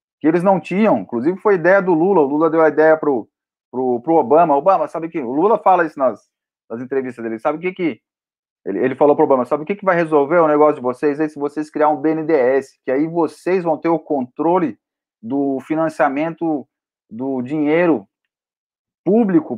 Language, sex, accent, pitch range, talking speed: Portuguese, male, Brazilian, 135-180 Hz, 210 wpm